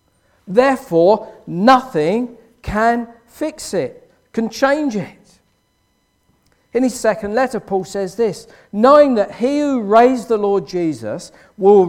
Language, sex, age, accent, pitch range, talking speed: English, male, 50-69, British, 175-250 Hz, 120 wpm